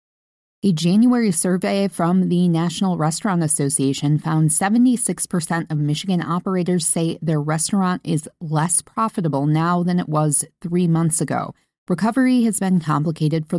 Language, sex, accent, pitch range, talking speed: English, female, American, 150-185 Hz, 135 wpm